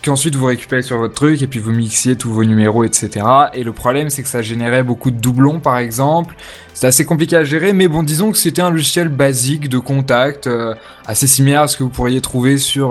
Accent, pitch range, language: French, 115-140 Hz, French